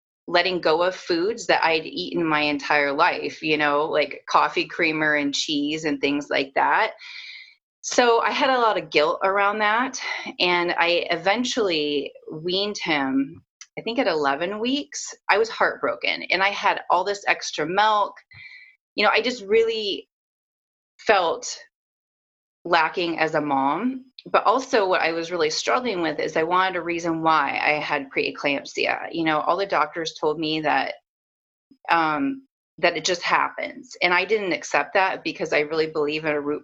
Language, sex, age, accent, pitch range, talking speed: English, female, 30-49, American, 155-235 Hz, 165 wpm